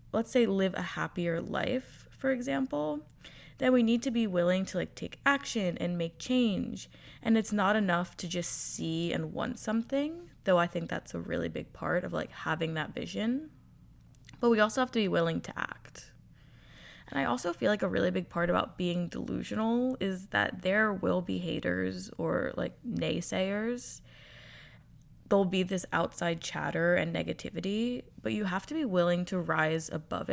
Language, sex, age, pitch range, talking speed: English, female, 20-39, 165-220 Hz, 180 wpm